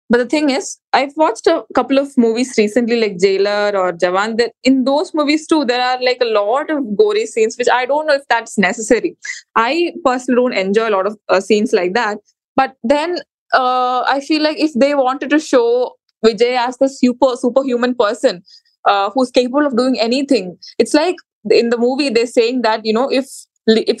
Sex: female